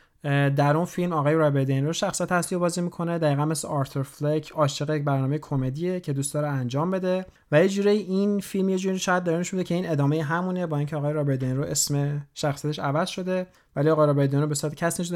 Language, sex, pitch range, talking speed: Persian, male, 140-165 Hz, 200 wpm